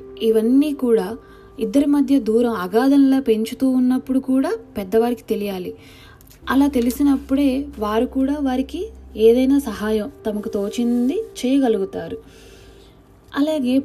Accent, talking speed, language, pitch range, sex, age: native, 95 wpm, Telugu, 205-255 Hz, female, 20-39